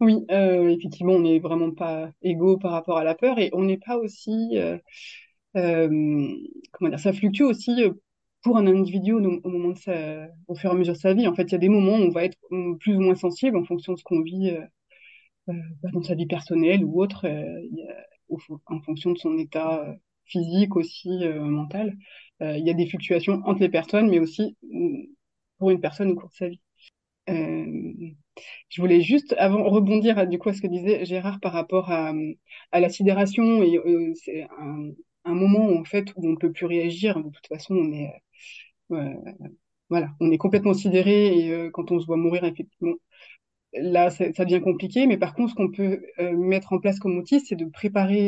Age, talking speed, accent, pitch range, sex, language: 20-39, 210 wpm, French, 170-205 Hz, female, French